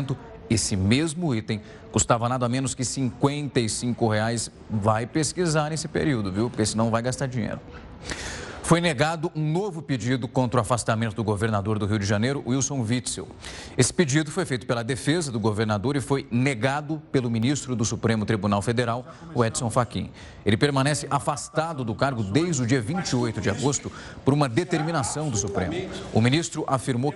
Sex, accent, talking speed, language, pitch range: male, Brazilian, 165 wpm, Portuguese, 115-145 Hz